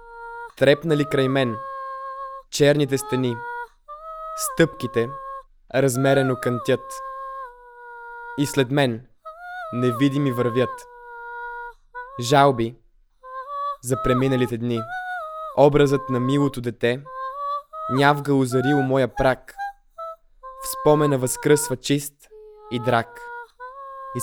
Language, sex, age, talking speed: Bulgarian, male, 20-39, 80 wpm